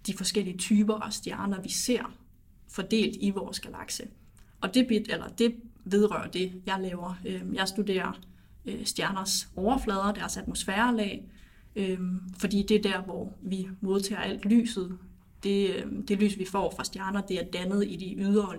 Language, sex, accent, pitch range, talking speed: Danish, female, native, 185-210 Hz, 145 wpm